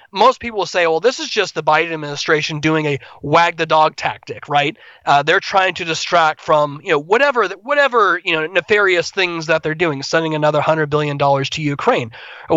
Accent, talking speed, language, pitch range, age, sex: American, 210 wpm, English, 145-170 Hz, 30-49, male